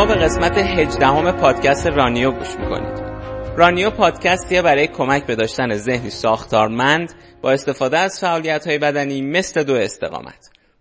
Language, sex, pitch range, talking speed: Persian, male, 120-150 Hz, 140 wpm